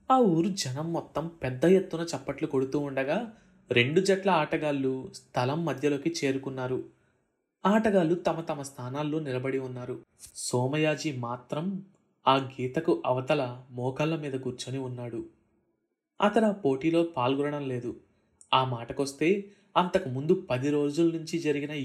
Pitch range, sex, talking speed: 130-185 Hz, male, 115 wpm